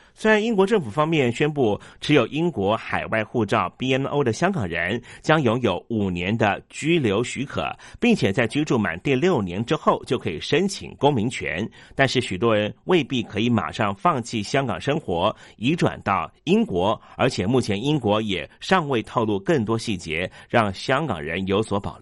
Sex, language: male, Chinese